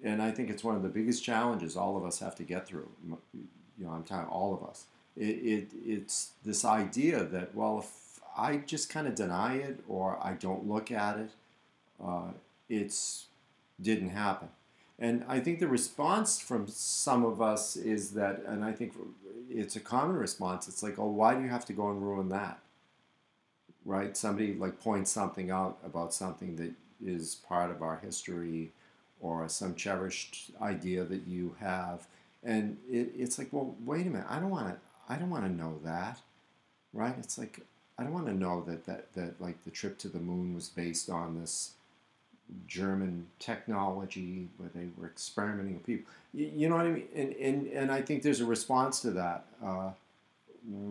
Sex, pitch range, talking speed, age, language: male, 90-115 Hz, 190 wpm, 50-69, English